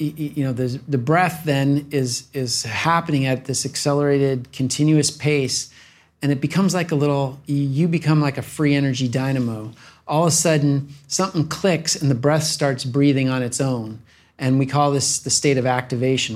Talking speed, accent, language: 175 wpm, American, English